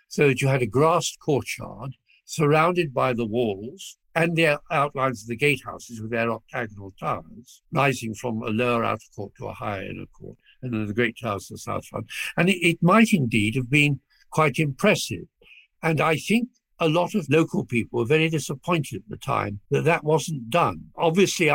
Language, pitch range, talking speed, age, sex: English, 120-165 Hz, 190 wpm, 60-79, male